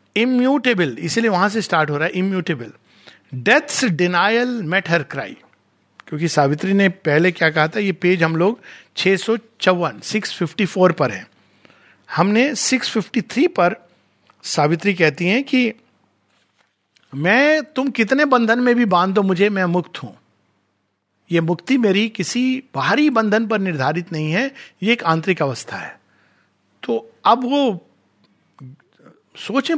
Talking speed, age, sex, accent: 135 wpm, 50-69, male, native